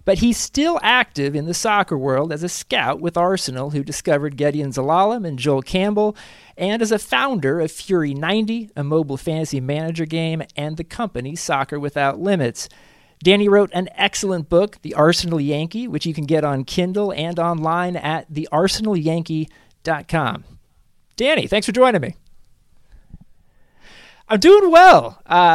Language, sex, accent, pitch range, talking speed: English, male, American, 140-190 Hz, 155 wpm